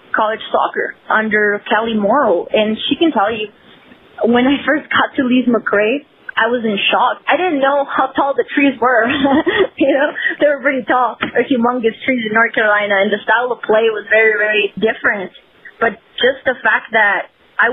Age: 20-39